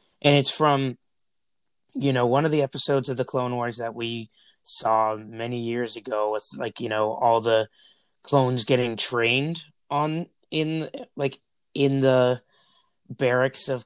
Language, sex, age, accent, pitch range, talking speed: English, male, 30-49, American, 120-145 Hz, 150 wpm